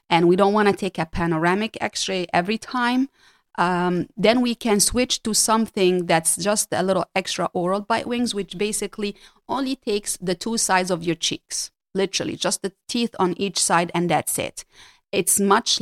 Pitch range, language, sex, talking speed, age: 180-210 Hz, English, female, 180 wpm, 30-49